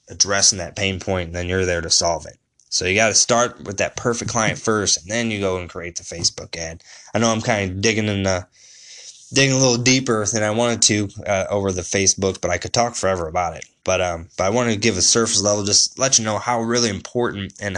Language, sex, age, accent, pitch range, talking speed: English, male, 20-39, American, 95-110 Hz, 255 wpm